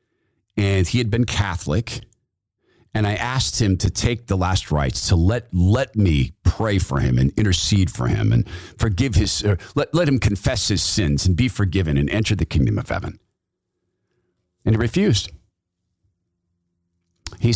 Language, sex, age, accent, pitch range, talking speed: English, male, 50-69, American, 90-115 Hz, 165 wpm